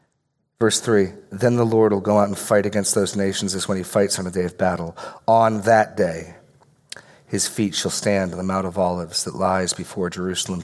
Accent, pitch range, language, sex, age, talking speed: American, 95-115 Hz, English, male, 40-59, 215 wpm